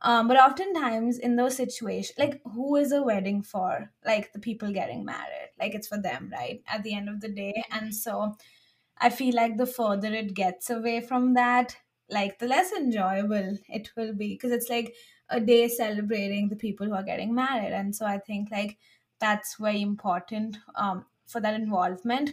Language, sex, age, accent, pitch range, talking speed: English, female, 20-39, Indian, 200-235 Hz, 190 wpm